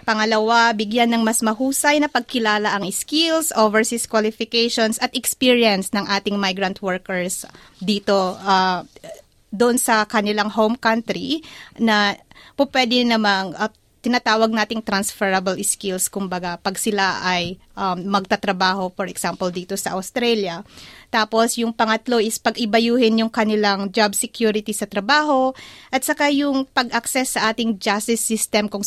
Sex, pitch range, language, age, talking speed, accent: female, 195-230 Hz, Filipino, 30-49, 130 wpm, native